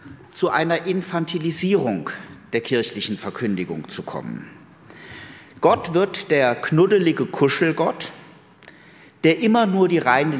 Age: 50-69